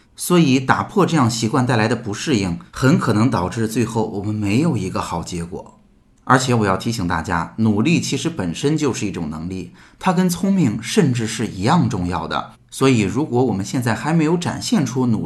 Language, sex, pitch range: Chinese, male, 100-125 Hz